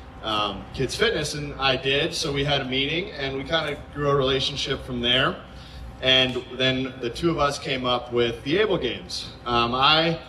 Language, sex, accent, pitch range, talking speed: English, male, American, 120-140 Hz, 200 wpm